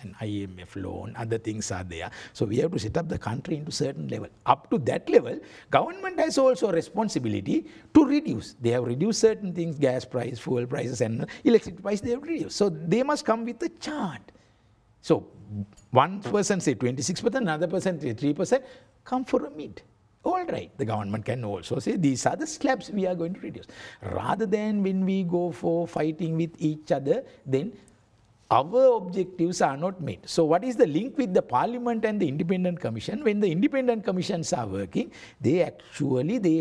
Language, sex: English, male